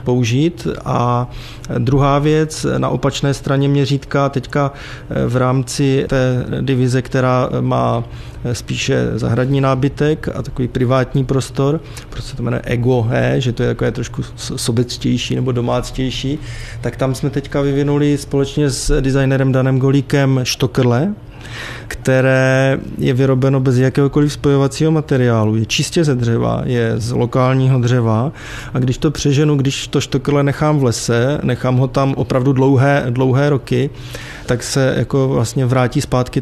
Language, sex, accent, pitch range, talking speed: Czech, male, native, 125-140 Hz, 135 wpm